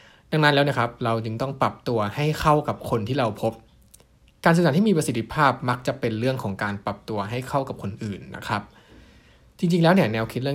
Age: 20-39